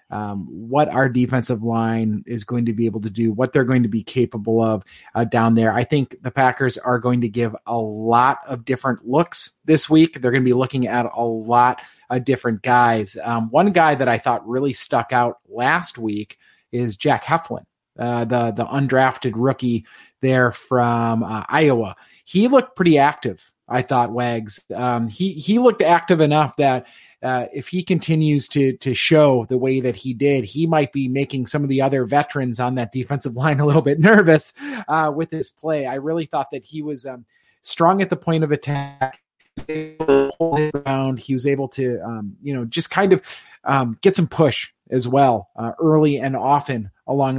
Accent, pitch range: American, 120-150 Hz